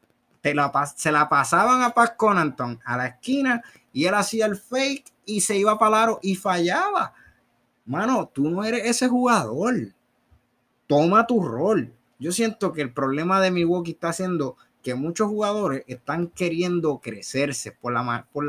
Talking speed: 155 wpm